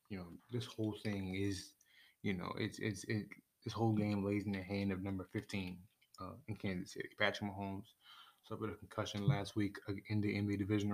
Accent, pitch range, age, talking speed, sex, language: American, 95-105 Hz, 20-39, 195 wpm, male, English